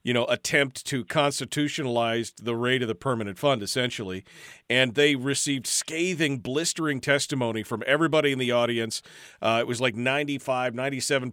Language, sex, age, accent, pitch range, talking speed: English, male, 40-59, American, 120-155 Hz, 155 wpm